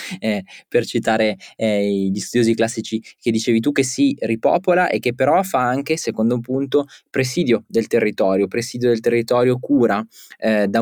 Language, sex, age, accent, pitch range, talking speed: Italian, male, 20-39, native, 110-125 Hz, 165 wpm